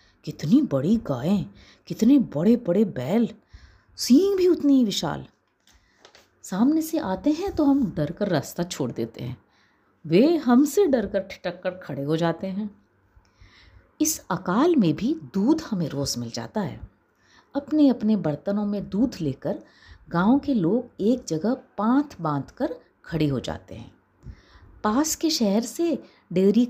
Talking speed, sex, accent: 145 wpm, female, native